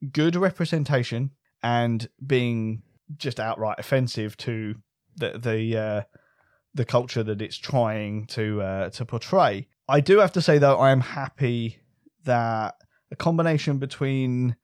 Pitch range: 115-150 Hz